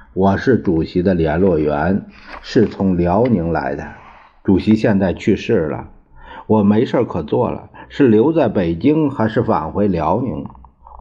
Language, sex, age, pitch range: Chinese, male, 50-69, 85-130 Hz